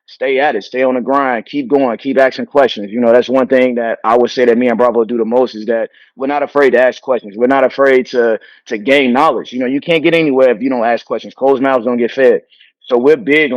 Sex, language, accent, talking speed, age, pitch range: male, English, American, 275 wpm, 30-49, 120-140 Hz